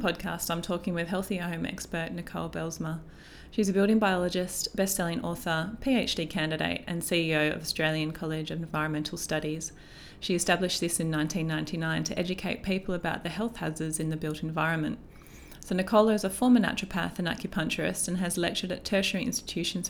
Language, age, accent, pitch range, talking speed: English, 30-49, Australian, 155-190 Hz, 170 wpm